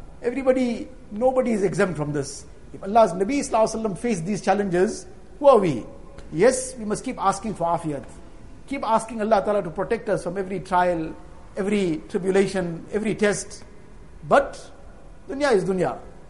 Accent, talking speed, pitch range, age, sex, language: Indian, 145 wpm, 175-255 Hz, 50-69, male, English